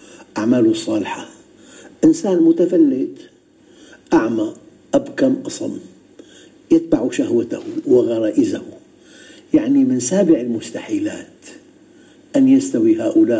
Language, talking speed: Arabic, 75 wpm